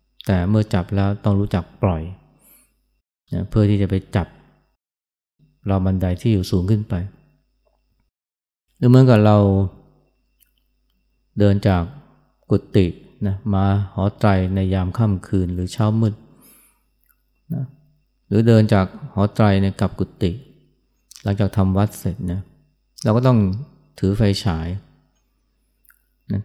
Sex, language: male, Thai